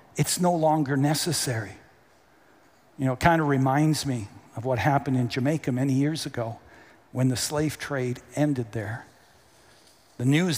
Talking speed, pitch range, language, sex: 155 wpm, 135-180 Hz, English, male